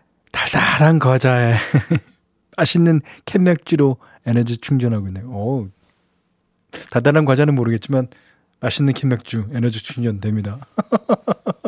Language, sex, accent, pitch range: Korean, male, native, 115-175 Hz